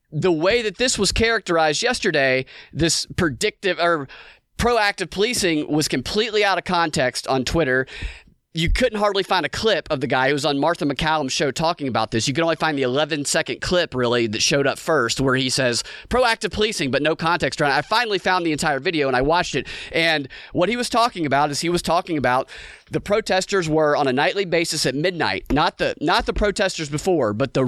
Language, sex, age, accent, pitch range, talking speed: English, male, 30-49, American, 145-185 Hz, 210 wpm